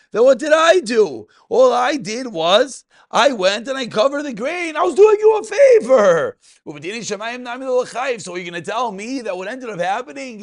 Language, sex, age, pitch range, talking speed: English, male, 40-59, 200-275 Hz, 195 wpm